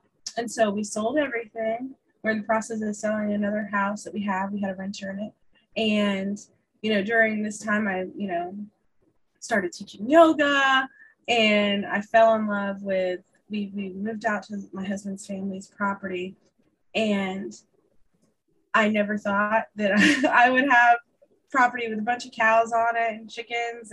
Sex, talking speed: female, 170 wpm